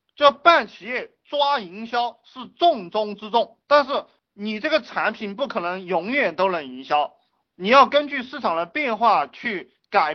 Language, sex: Chinese, male